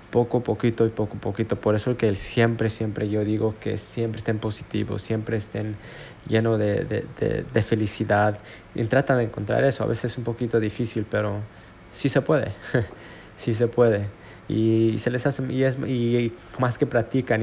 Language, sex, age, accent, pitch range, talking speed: Spanish, male, 20-39, Mexican, 110-120 Hz, 185 wpm